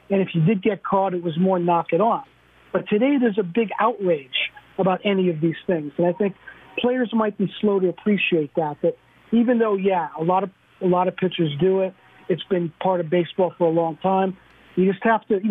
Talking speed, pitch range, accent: 225 wpm, 170-205 Hz, American